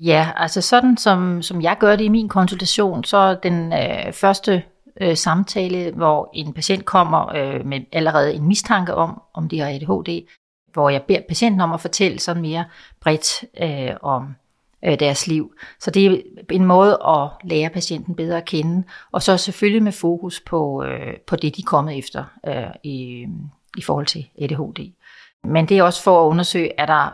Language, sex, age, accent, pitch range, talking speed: Danish, female, 40-59, native, 155-190 Hz, 175 wpm